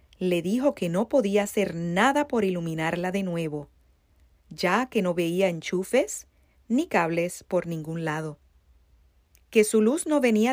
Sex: female